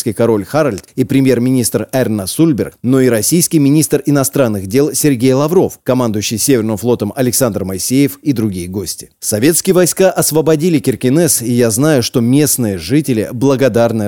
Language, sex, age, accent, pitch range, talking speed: Russian, male, 30-49, native, 115-145 Hz, 140 wpm